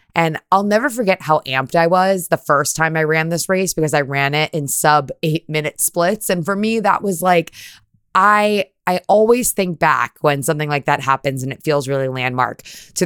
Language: English